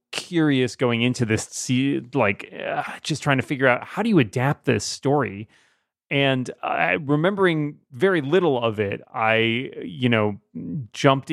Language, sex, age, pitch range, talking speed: English, male, 30-49, 110-140 Hz, 150 wpm